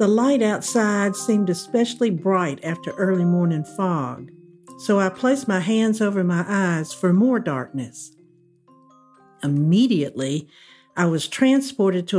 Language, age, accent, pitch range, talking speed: English, 60-79, American, 175-235 Hz, 130 wpm